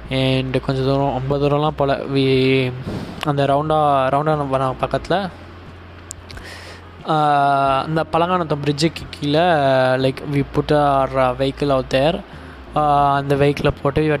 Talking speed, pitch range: 145 wpm, 130-150 Hz